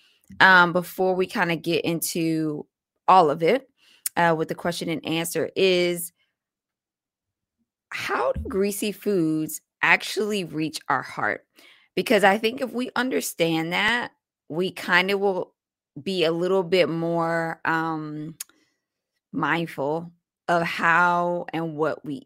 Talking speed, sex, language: 130 wpm, female, English